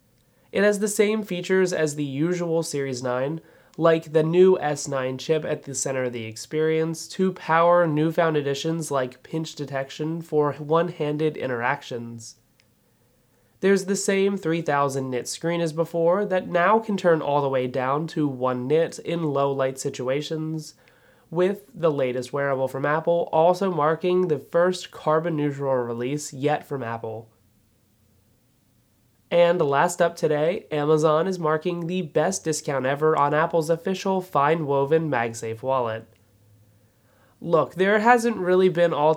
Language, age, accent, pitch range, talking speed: English, 20-39, American, 130-170 Hz, 135 wpm